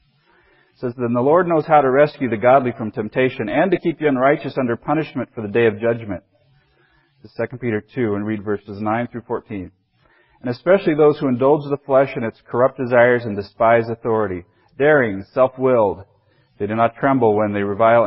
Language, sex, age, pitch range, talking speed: English, male, 40-59, 105-130 Hz, 190 wpm